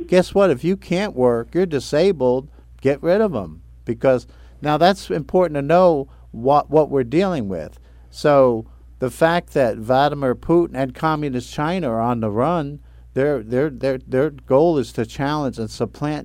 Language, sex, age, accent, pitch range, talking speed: English, male, 50-69, American, 115-160 Hz, 170 wpm